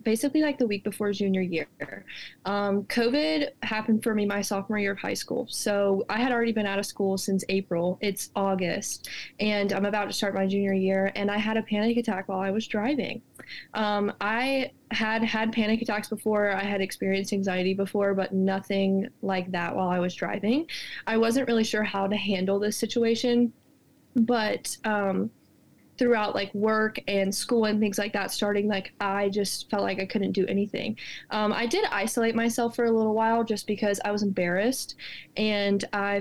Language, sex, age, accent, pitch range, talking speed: English, female, 20-39, American, 195-225 Hz, 190 wpm